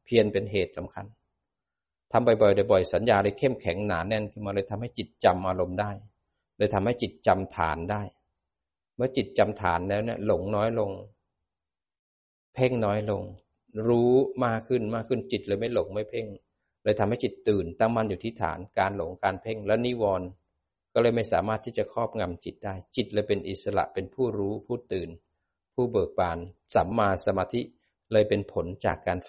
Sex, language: male, Thai